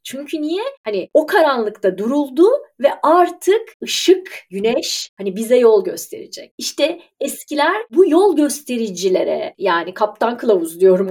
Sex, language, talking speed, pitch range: female, Turkish, 125 wpm, 205-330 Hz